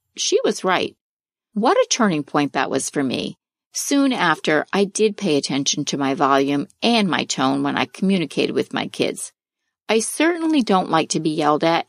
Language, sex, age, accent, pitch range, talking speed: English, female, 50-69, American, 160-235 Hz, 185 wpm